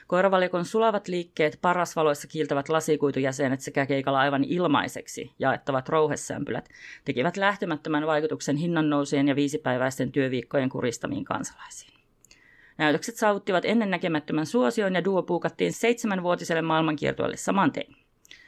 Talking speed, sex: 100 wpm, female